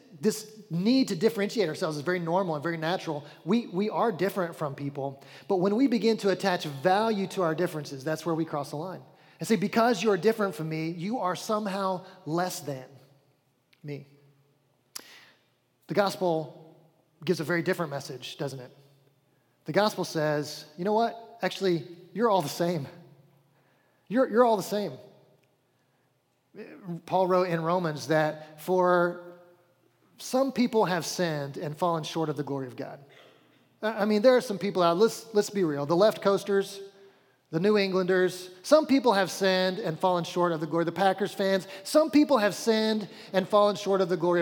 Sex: male